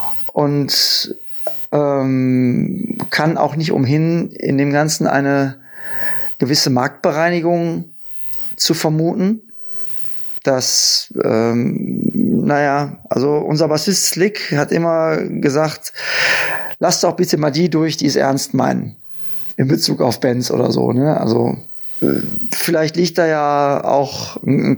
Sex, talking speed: male, 115 wpm